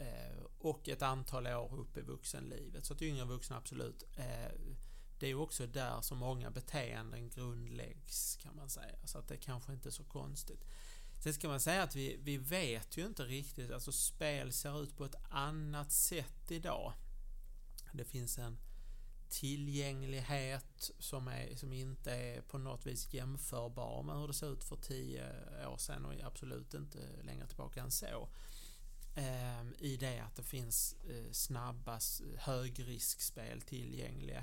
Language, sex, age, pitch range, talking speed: English, male, 30-49, 120-140 Hz, 155 wpm